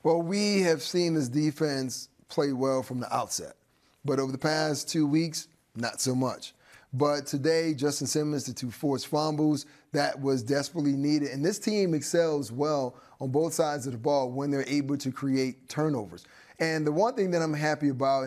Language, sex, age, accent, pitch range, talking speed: English, male, 30-49, American, 140-165 Hz, 185 wpm